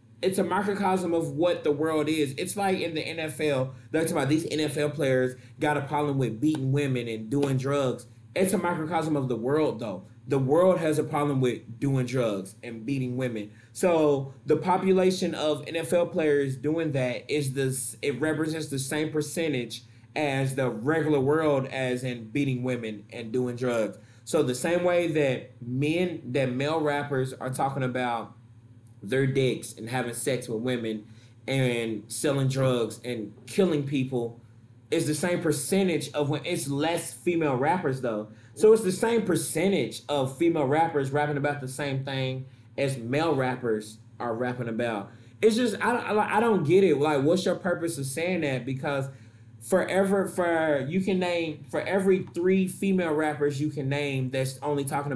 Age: 20-39